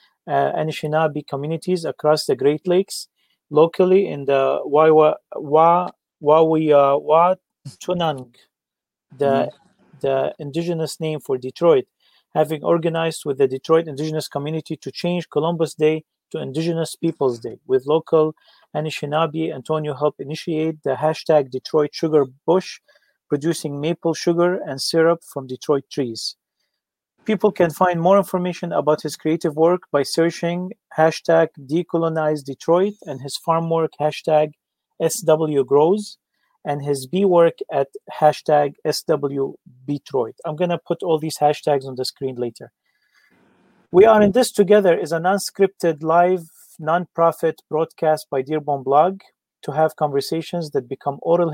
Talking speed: 125 wpm